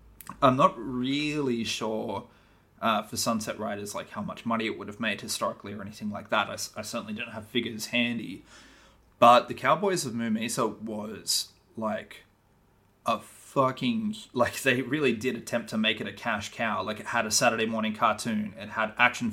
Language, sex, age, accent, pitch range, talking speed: English, male, 20-39, Australian, 105-120 Hz, 185 wpm